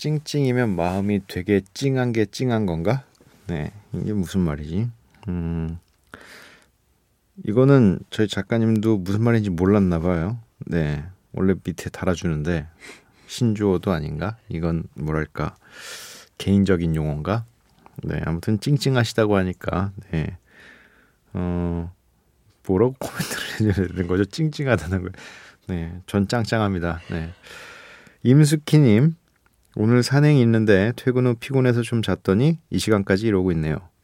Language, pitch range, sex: Korean, 90-120 Hz, male